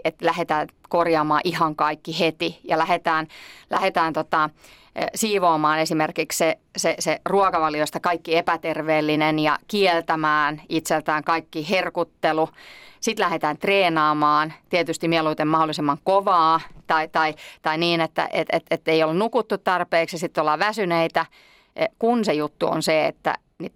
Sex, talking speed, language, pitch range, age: female, 120 wpm, Finnish, 155-170 Hz, 30-49